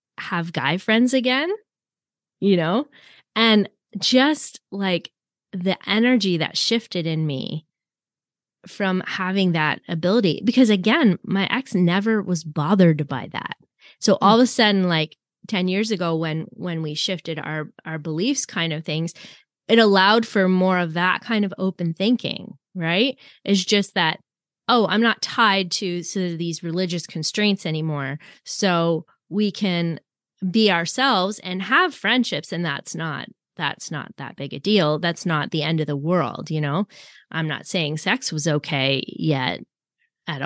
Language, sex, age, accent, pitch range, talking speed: English, female, 20-39, American, 165-215 Hz, 155 wpm